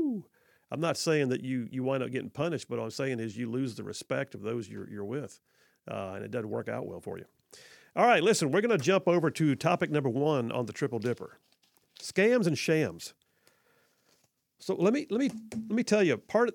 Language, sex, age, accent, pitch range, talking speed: English, male, 40-59, American, 125-165 Hz, 220 wpm